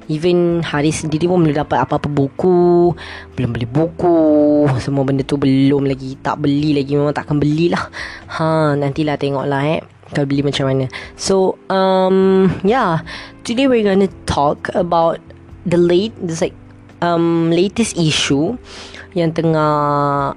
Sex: female